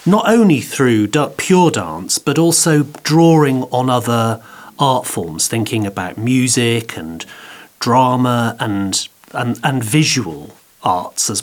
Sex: male